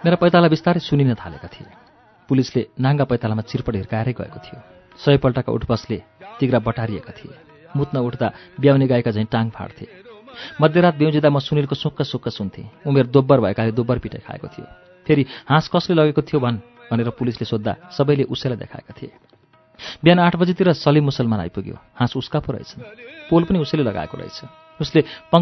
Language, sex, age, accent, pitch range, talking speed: English, male, 40-59, Indian, 115-155 Hz, 105 wpm